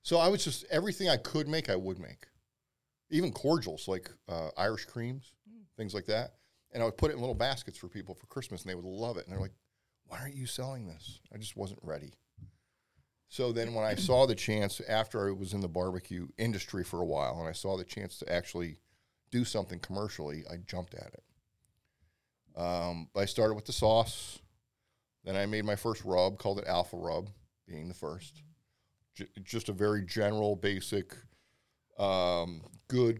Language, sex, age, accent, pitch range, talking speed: English, male, 40-59, American, 95-120 Hz, 190 wpm